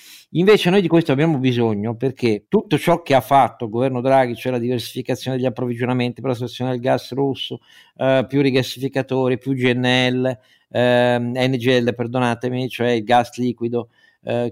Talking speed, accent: 160 wpm, native